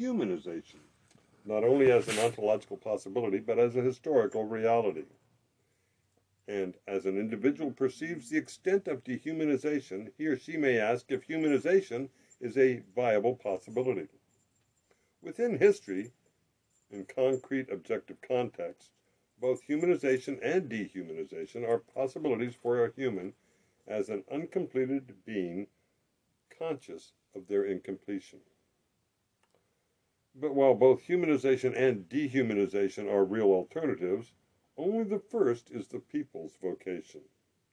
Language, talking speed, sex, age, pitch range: English, 115 wpm, male, 60-79, 100-140 Hz